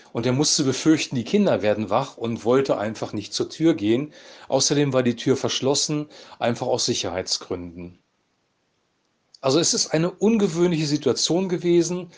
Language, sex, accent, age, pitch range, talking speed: German, male, German, 40-59, 120-160 Hz, 150 wpm